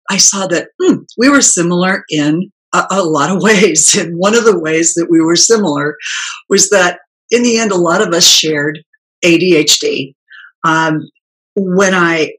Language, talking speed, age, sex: English, 175 wpm, 50-69, female